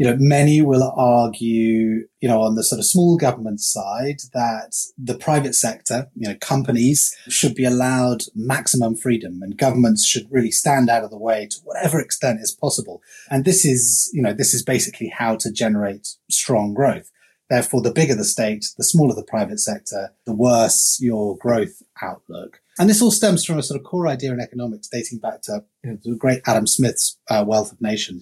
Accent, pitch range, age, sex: British, 110-135 Hz, 30-49, male